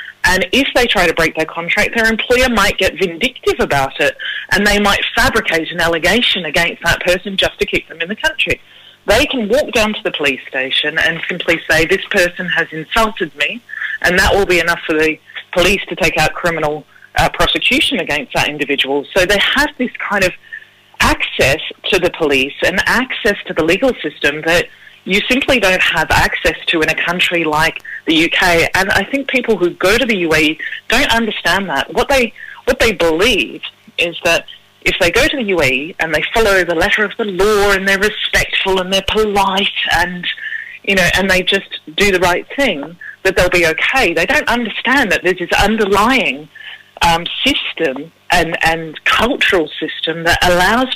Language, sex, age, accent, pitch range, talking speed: English, female, 30-49, Australian, 170-235 Hz, 190 wpm